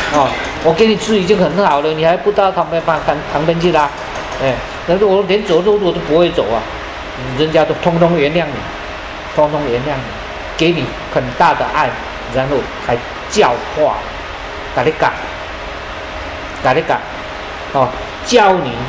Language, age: Chinese, 50-69